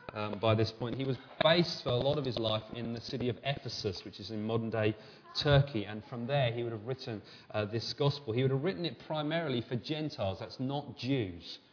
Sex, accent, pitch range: male, British, 105-130 Hz